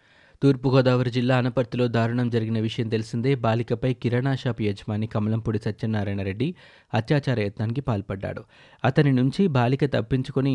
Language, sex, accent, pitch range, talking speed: Telugu, male, native, 110-130 Hz, 120 wpm